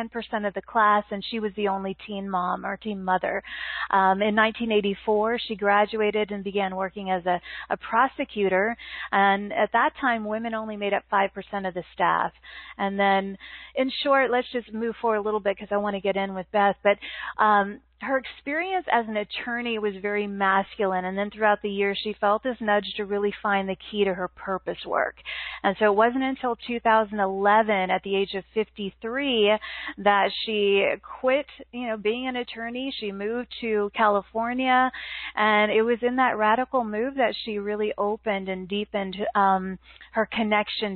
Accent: American